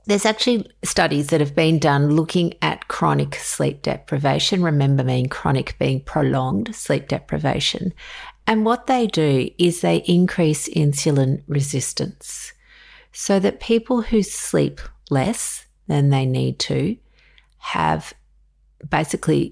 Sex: female